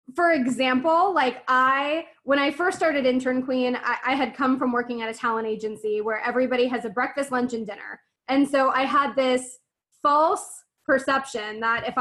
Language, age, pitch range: English, 20-39, 245-295 Hz